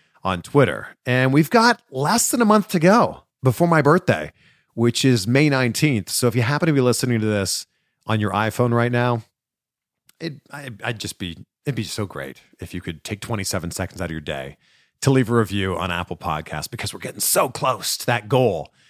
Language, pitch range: English, 105-155 Hz